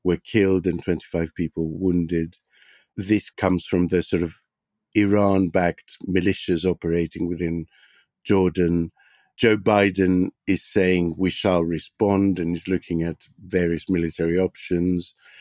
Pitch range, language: 90-105 Hz, English